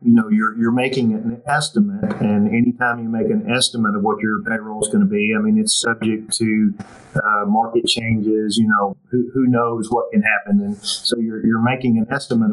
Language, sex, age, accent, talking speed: English, male, 40-59, American, 210 wpm